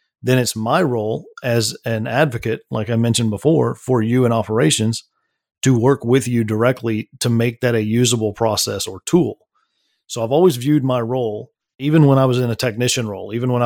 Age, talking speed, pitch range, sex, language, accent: 40-59, 195 wpm, 115-130 Hz, male, English, American